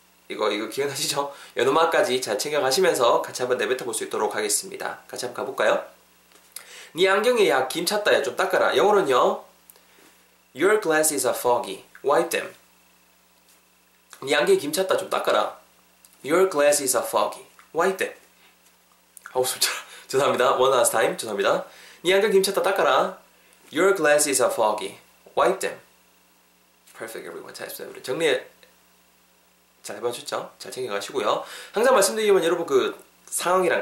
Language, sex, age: Korean, male, 20-39